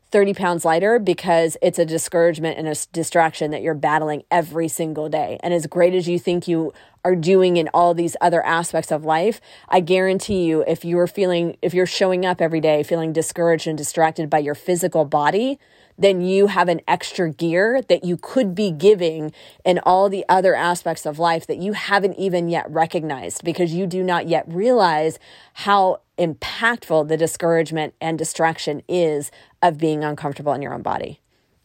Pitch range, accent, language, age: 155-180 Hz, American, English, 30-49